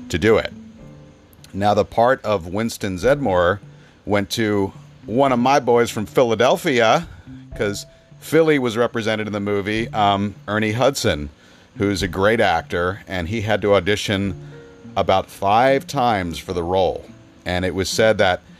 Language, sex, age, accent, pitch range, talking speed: English, male, 40-59, American, 90-115 Hz, 150 wpm